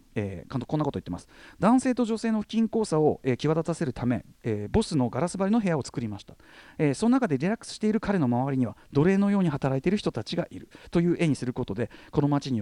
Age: 40-59